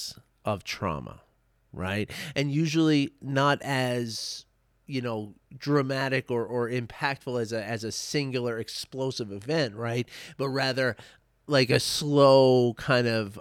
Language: English